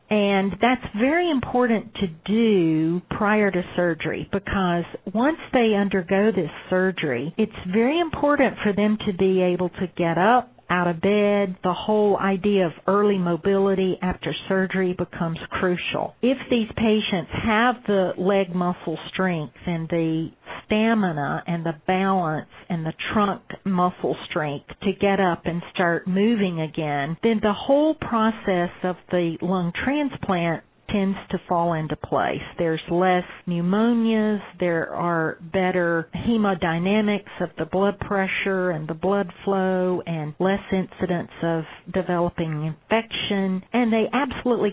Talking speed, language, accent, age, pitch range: 135 wpm, English, American, 50-69, 175-210 Hz